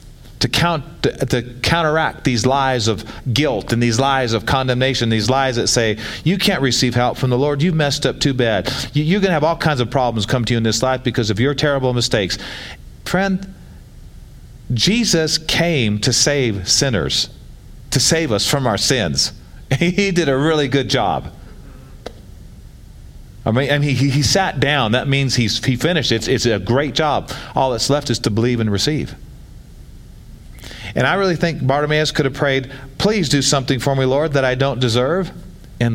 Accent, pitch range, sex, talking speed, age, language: American, 115-150 Hz, male, 190 wpm, 40-59, English